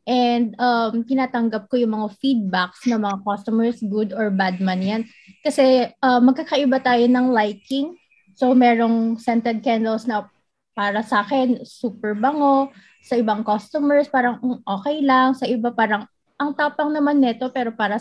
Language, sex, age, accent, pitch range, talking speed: Filipino, female, 20-39, native, 225-270 Hz, 155 wpm